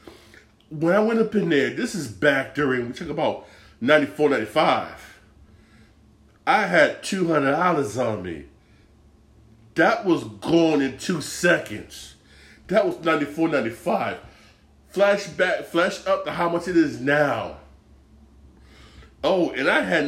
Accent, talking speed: American, 150 wpm